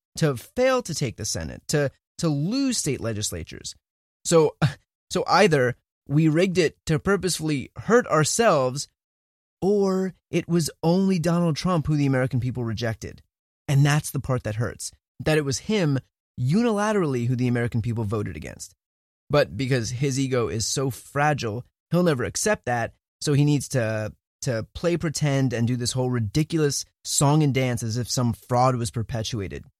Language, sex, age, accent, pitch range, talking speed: English, male, 20-39, American, 110-155 Hz, 165 wpm